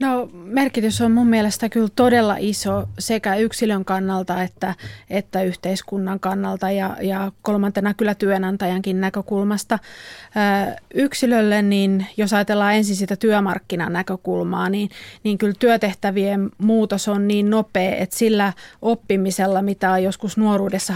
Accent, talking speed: native, 125 wpm